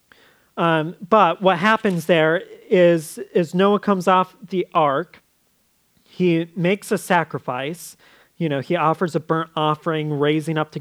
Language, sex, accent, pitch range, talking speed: English, male, American, 150-185 Hz, 145 wpm